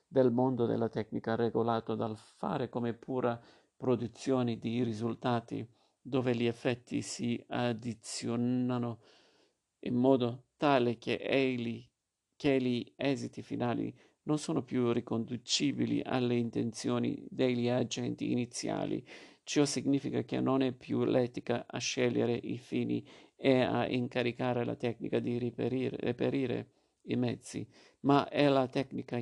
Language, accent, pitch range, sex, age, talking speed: Italian, native, 115-130 Hz, male, 50-69, 125 wpm